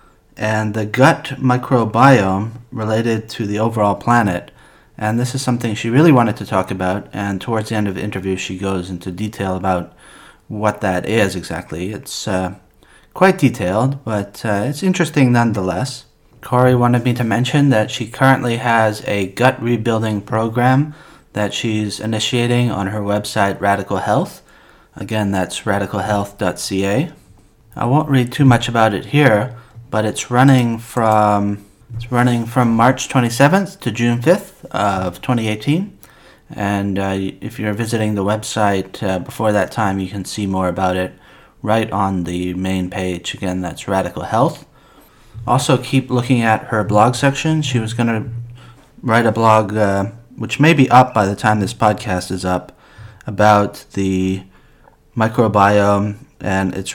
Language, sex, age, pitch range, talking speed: English, male, 30-49, 100-125 Hz, 155 wpm